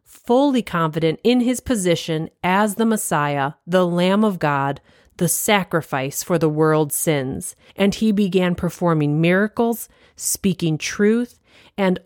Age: 40-59